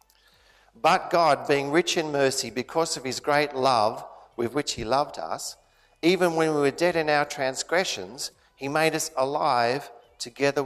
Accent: Australian